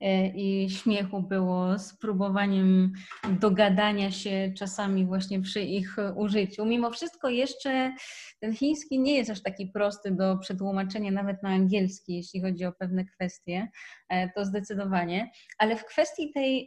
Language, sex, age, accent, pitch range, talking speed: Polish, female, 20-39, native, 195-230 Hz, 135 wpm